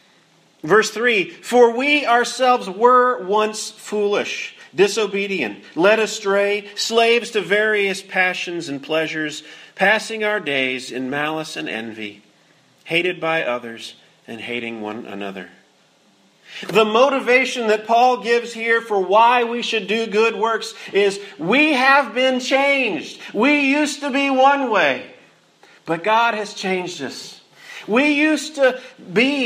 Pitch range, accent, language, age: 165-240 Hz, American, English, 50-69